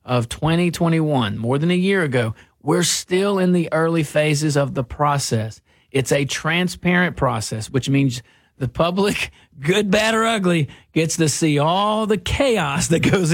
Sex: male